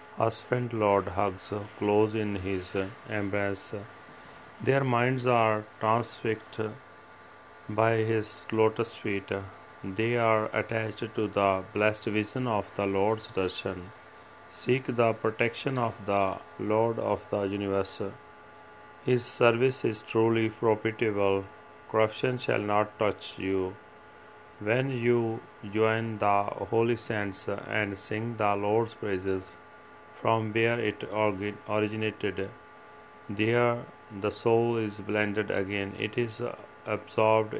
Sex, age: male, 40-59